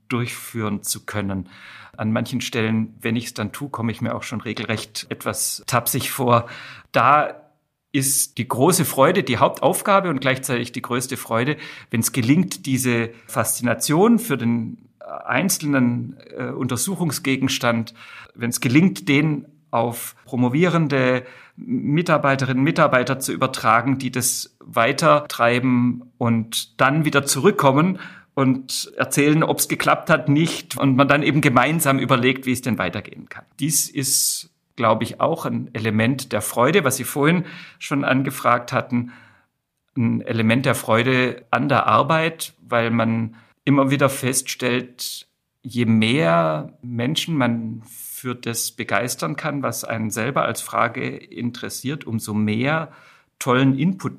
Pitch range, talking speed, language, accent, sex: 115-145 Hz, 135 wpm, German, German, male